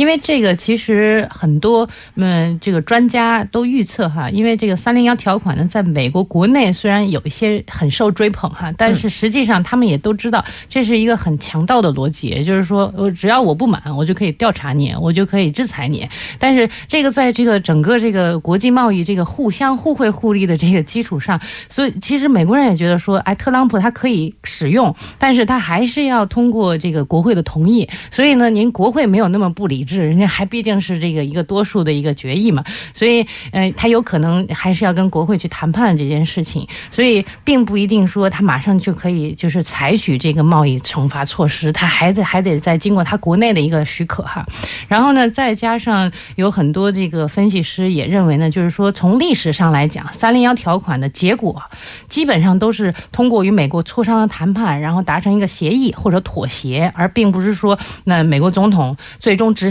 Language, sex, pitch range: Korean, female, 170-225 Hz